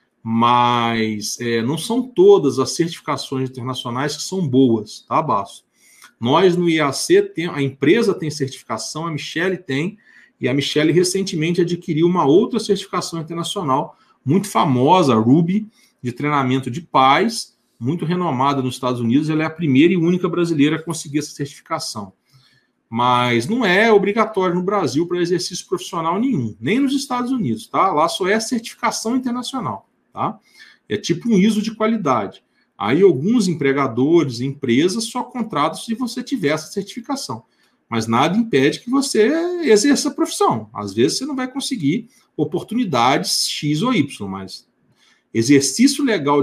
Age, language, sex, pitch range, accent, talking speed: 40-59, Portuguese, male, 135-215 Hz, Brazilian, 145 wpm